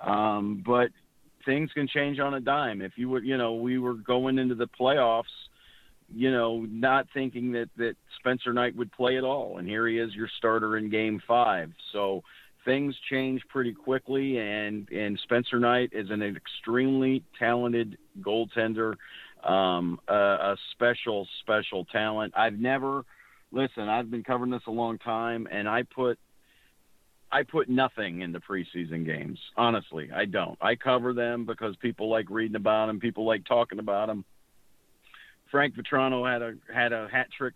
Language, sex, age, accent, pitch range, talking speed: English, male, 50-69, American, 105-125 Hz, 165 wpm